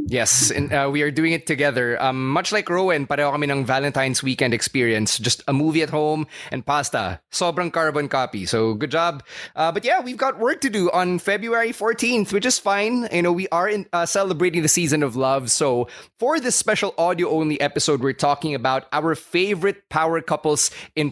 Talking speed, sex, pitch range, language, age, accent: 195 wpm, male, 135-175 Hz, English, 20-39, Filipino